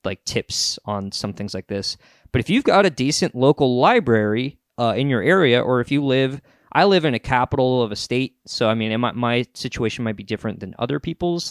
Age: 20-39